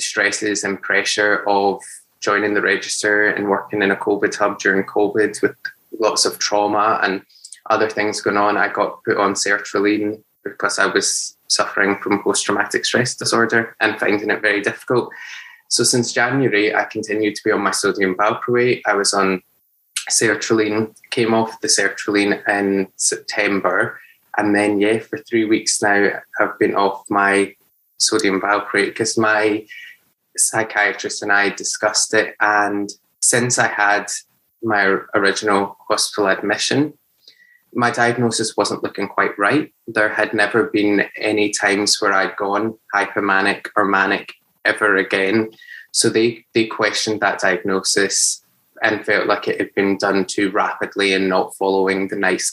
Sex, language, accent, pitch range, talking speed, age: male, English, British, 100-110 Hz, 150 wpm, 20-39